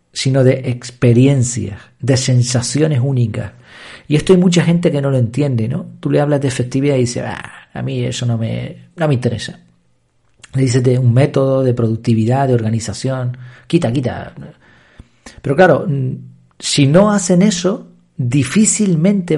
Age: 40-59